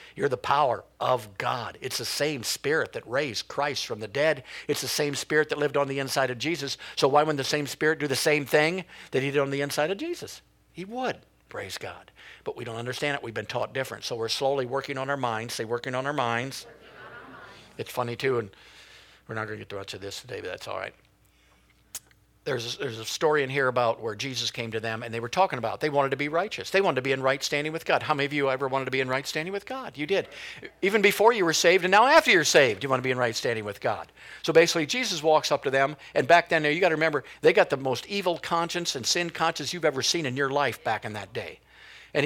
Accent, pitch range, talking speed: American, 130-165 Hz, 260 wpm